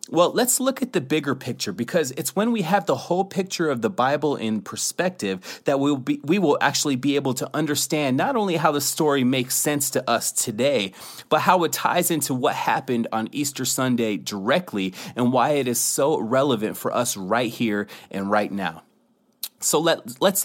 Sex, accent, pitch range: male, American, 125-165 Hz